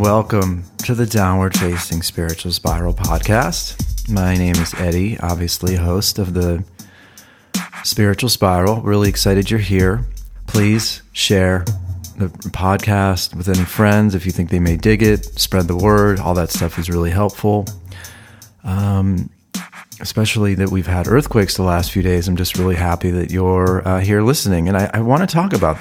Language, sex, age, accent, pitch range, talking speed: English, male, 40-59, American, 85-105 Hz, 165 wpm